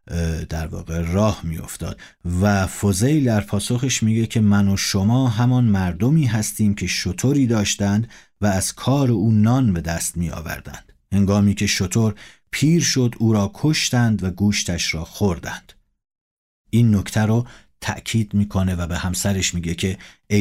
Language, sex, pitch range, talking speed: Persian, male, 90-110 Hz, 145 wpm